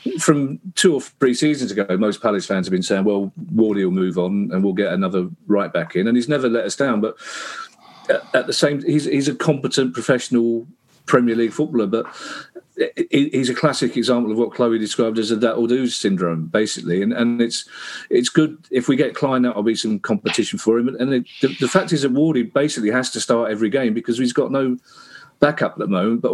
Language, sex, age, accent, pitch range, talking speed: English, male, 40-59, British, 110-140 Hz, 225 wpm